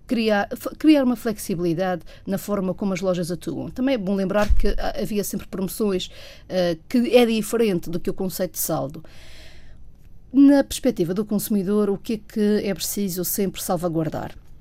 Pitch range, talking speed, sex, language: 180-225 Hz, 165 wpm, female, Portuguese